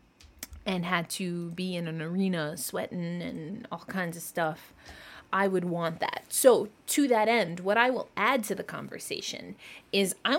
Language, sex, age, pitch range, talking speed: English, female, 20-39, 180-245 Hz, 175 wpm